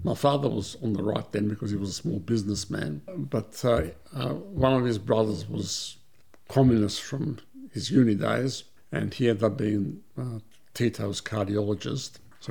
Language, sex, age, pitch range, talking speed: English, male, 60-79, 110-140 Hz, 170 wpm